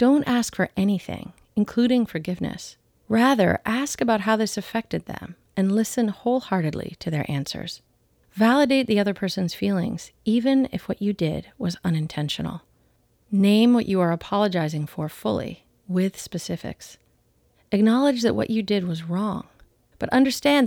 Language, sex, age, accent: English, female, 30-49, American